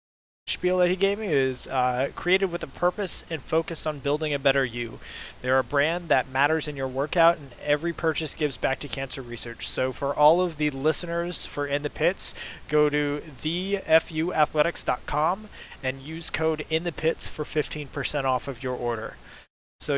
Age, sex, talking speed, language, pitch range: 20-39, male, 180 wpm, English, 140-170 Hz